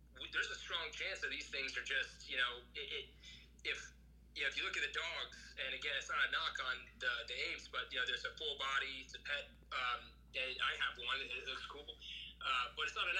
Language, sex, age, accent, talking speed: English, male, 30-49, American, 250 wpm